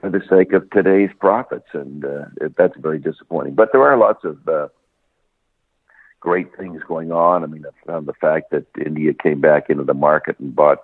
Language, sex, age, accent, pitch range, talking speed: English, male, 60-79, American, 75-85 Hz, 200 wpm